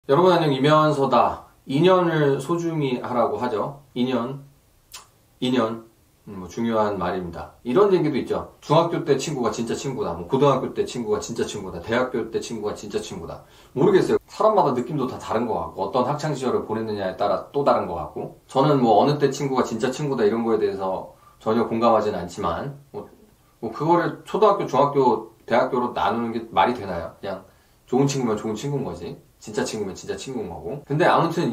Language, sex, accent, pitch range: Korean, male, native, 125-190 Hz